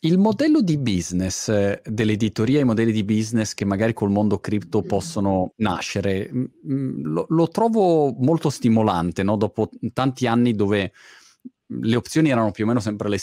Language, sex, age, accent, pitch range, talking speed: Italian, male, 30-49, native, 100-125 Hz, 155 wpm